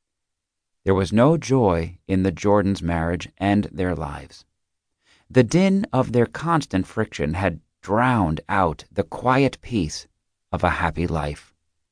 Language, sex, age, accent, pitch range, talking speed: English, male, 40-59, American, 80-120 Hz, 135 wpm